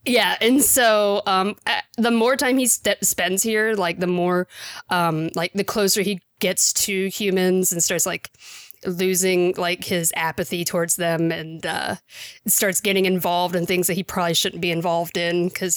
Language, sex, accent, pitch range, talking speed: English, female, American, 185-230 Hz, 170 wpm